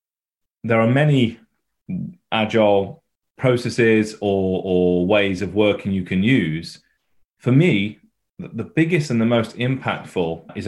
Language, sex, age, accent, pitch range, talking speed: English, male, 30-49, British, 90-115 Hz, 125 wpm